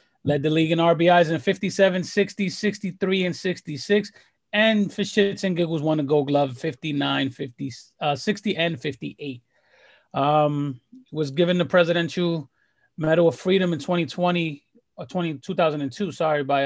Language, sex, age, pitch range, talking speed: English, male, 30-49, 145-180 Hz, 150 wpm